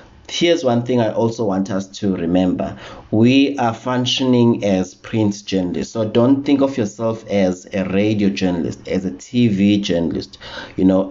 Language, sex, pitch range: English, male, 95-115 Hz